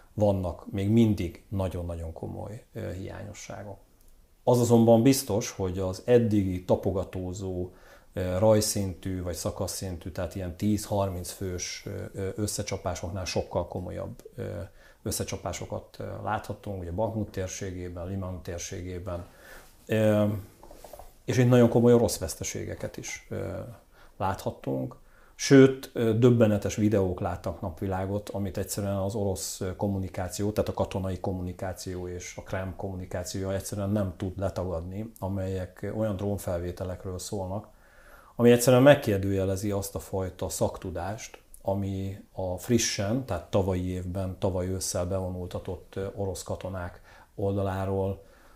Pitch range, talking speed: 95-105 Hz, 110 wpm